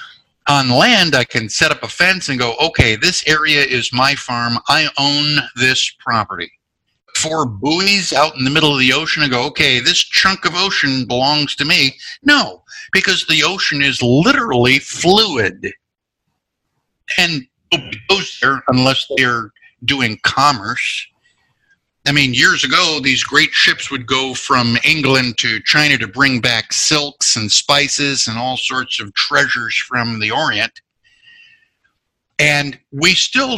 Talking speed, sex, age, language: 145 wpm, male, 50-69, English